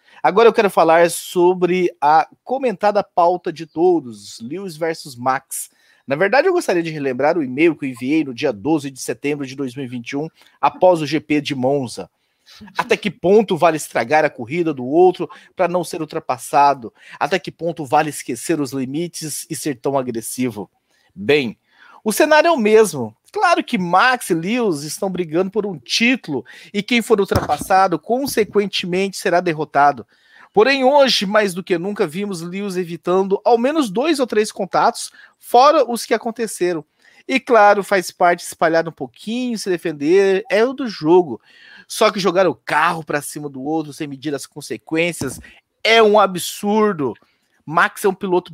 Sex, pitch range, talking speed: male, 150-220 Hz, 170 wpm